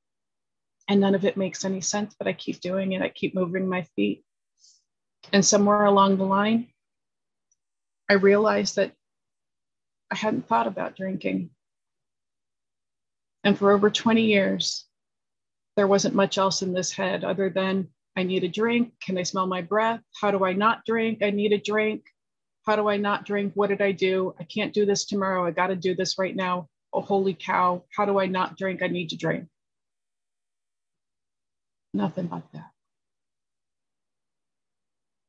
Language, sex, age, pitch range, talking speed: English, female, 30-49, 185-210 Hz, 165 wpm